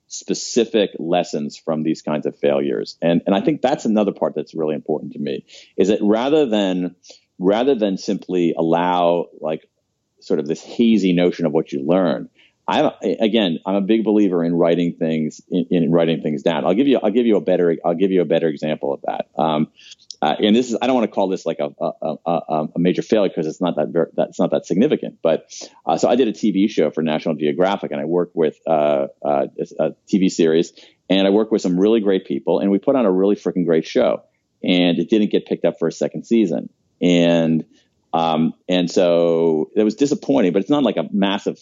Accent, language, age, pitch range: American, English, 40-59, 80-100 Hz